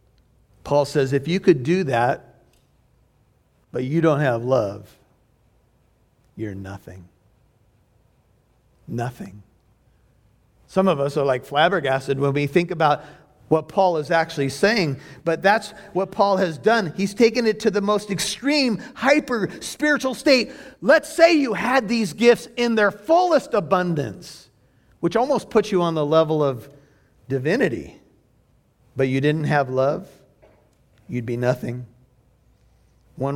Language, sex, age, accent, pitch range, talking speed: English, male, 50-69, American, 125-195 Hz, 130 wpm